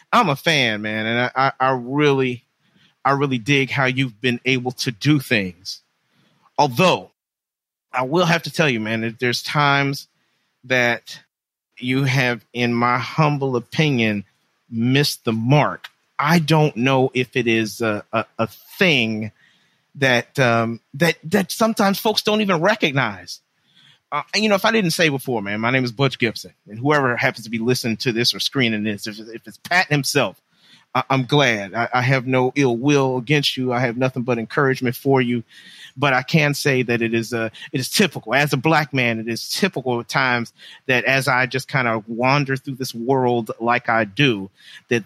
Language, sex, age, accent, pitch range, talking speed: English, male, 40-59, American, 120-145 Hz, 185 wpm